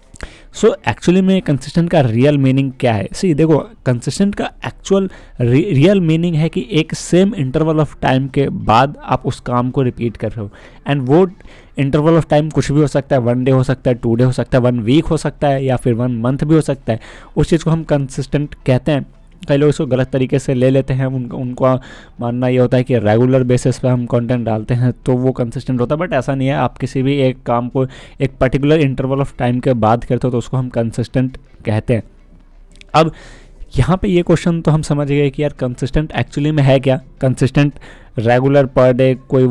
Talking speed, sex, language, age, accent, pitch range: 225 wpm, male, Hindi, 20-39, native, 120-145 Hz